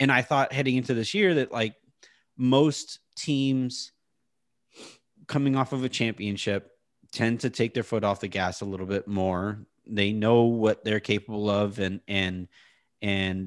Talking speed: 165 wpm